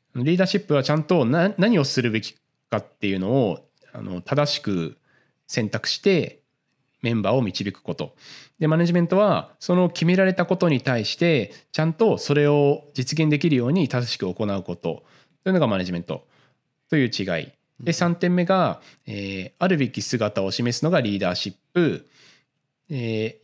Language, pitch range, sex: Japanese, 110-155 Hz, male